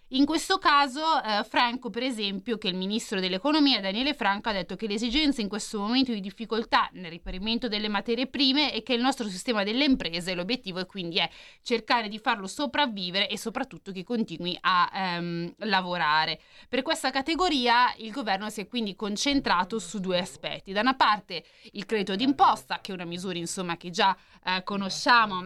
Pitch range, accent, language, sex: 190-255 Hz, native, Italian, female